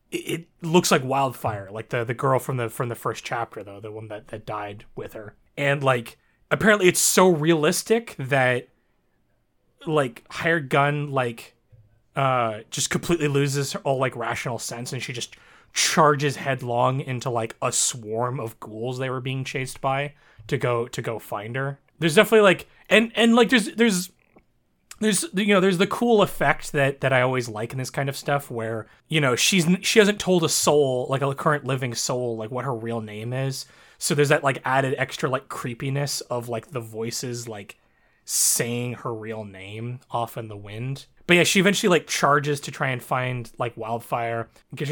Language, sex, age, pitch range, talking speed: English, male, 20-39, 115-150 Hz, 190 wpm